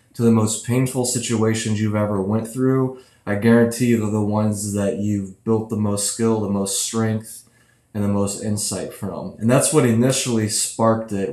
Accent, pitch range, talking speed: American, 105-115 Hz, 185 wpm